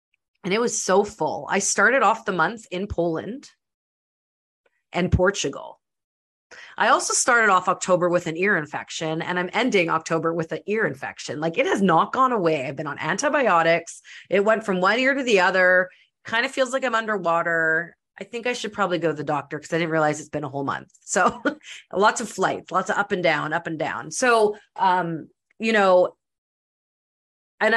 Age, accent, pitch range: 30-49, American, 160-200 Hz